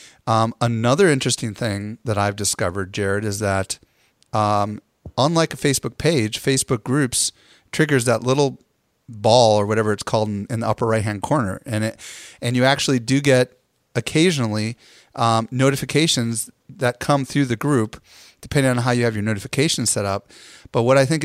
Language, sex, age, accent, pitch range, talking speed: English, male, 30-49, American, 110-135 Hz, 170 wpm